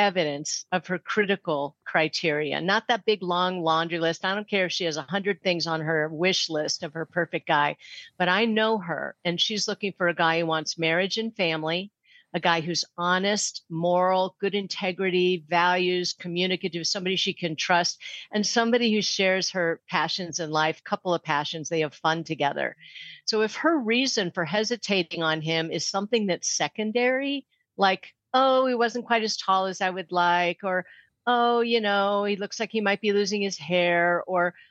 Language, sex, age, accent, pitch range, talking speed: English, female, 50-69, American, 170-210 Hz, 185 wpm